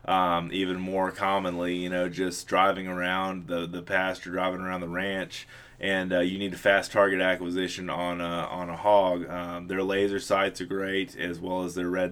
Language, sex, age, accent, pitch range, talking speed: English, male, 20-39, American, 90-100 Hz, 200 wpm